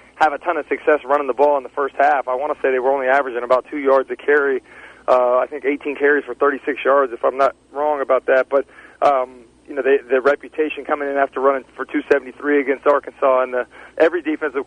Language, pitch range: English, 135-150 Hz